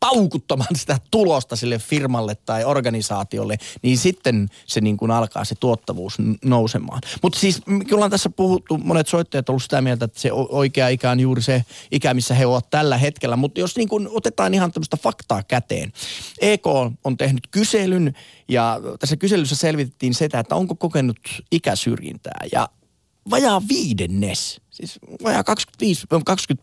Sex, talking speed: male, 150 wpm